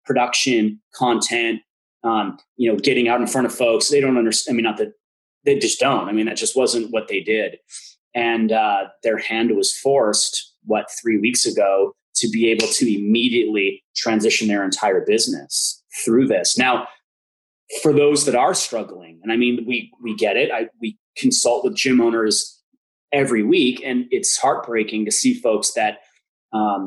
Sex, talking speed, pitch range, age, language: male, 175 wpm, 110-160 Hz, 30-49, English